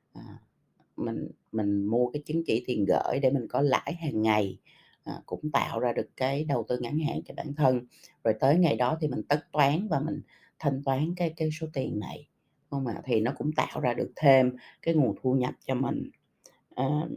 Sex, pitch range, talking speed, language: female, 120-160 Hz, 215 wpm, Vietnamese